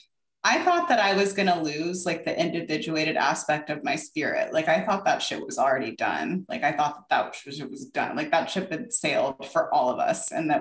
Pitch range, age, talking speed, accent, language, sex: 170-235 Hz, 20-39, 240 wpm, American, English, female